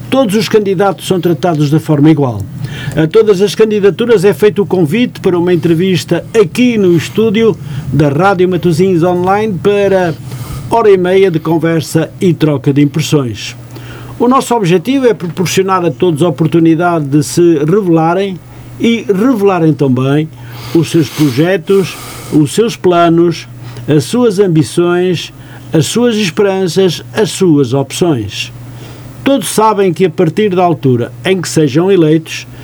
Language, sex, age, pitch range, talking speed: Portuguese, male, 50-69, 140-190 Hz, 140 wpm